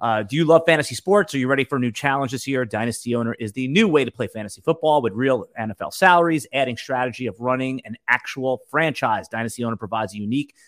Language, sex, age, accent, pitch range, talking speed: English, male, 30-49, American, 120-155 Hz, 230 wpm